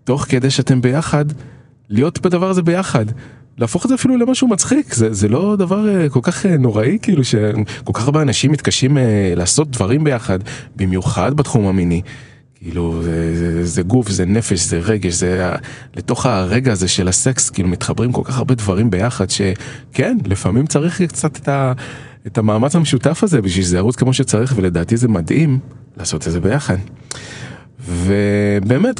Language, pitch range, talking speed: Hebrew, 100-140 Hz, 155 wpm